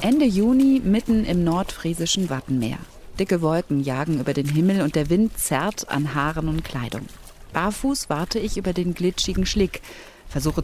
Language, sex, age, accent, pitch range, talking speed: German, female, 40-59, German, 145-200 Hz, 160 wpm